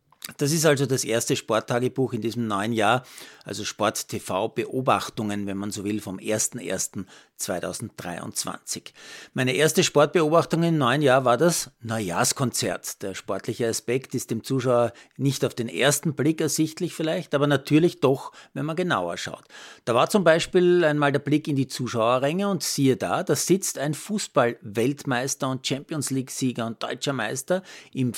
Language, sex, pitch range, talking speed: German, male, 110-145 Hz, 150 wpm